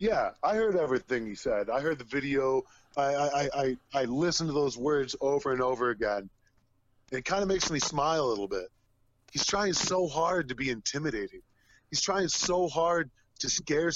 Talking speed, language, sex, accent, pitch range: 190 wpm, English, male, American, 120-170 Hz